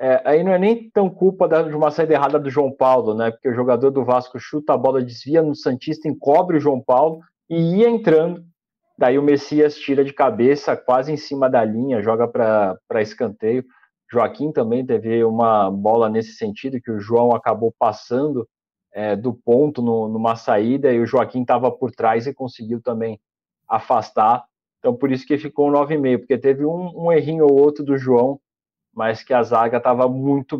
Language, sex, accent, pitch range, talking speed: Portuguese, male, Brazilian, 115-150 Hz, 190 wpm